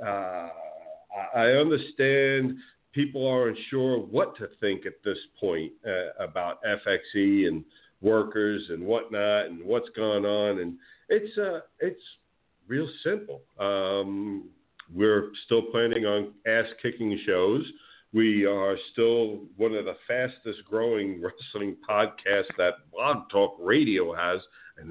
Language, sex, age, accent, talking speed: English, male, 50-69, American, 130 wpm